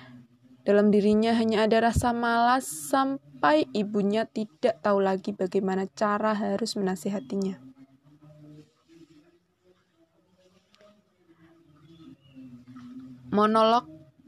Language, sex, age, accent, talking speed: Indonesian, female, 20-39, native, 65 wpm